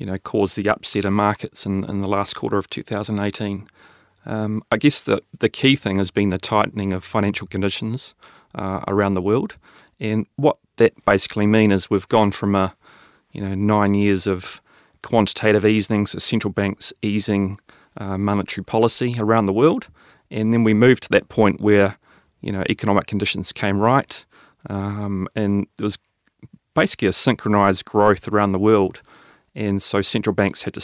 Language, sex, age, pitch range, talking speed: English, male, 30-49, 100-110 Hz, 175 wpm